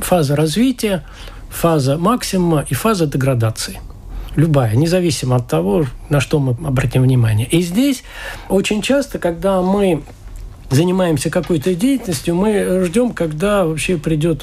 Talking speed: 125 wpm